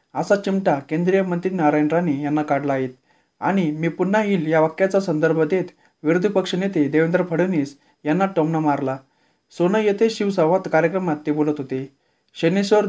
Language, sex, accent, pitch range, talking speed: Marathi, male, native, 150-185 Hz, 150 wpm